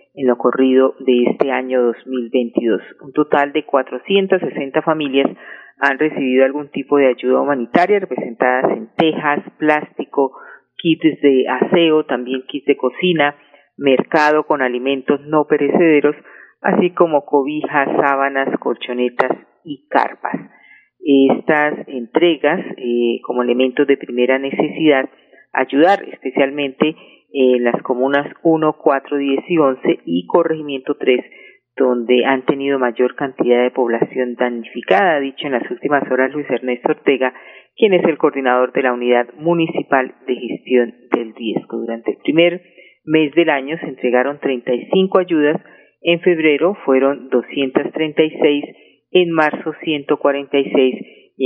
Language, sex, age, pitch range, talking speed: Spanish, female, 40-59, 125-155 Hz, 130 wpm